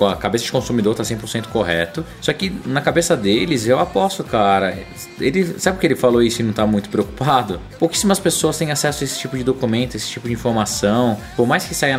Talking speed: 220 wpm